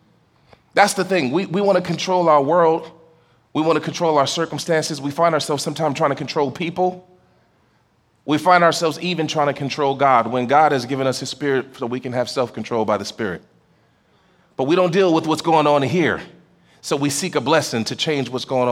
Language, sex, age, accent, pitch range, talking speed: English, male, 30-49, American, 145-230 Hz, 210 wpm